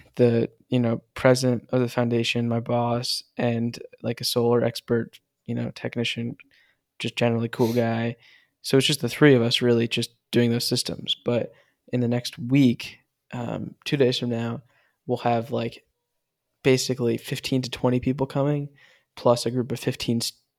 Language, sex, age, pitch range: English, male, 10-29, 120-130 Hz